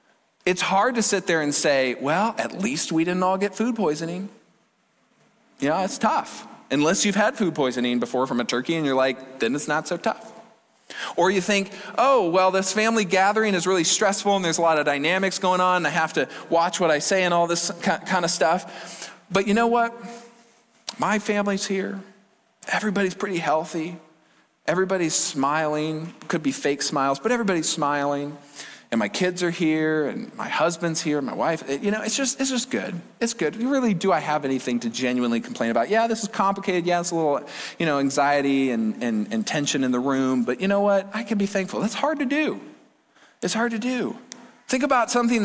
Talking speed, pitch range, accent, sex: 205 wpm, 155-220 Hz, American, male